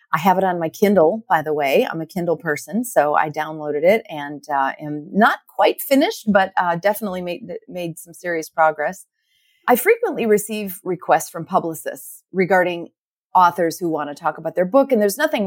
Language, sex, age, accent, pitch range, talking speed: English, female, 40-59, American, 165-220 Hz, 190 wpm